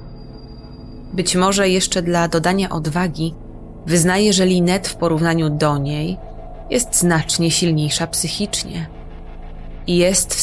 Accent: native